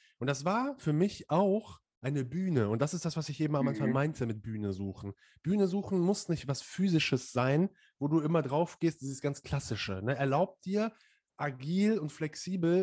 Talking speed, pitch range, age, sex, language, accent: 195 wpm, 135-180 Hz, 30-49, male, German, German